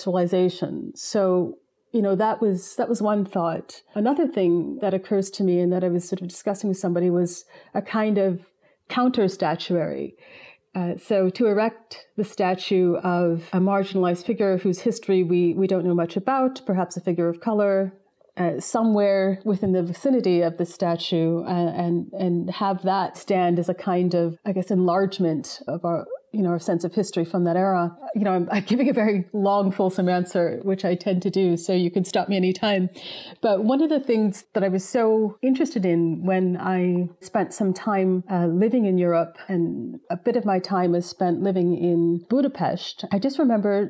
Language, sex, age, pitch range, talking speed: English, female, 30-49, 180-210 Hz, 190 wpm